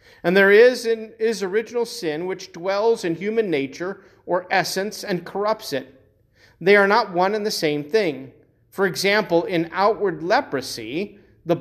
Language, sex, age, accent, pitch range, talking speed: English, male, 40-59, American, 155-205 Hz, 155 wpm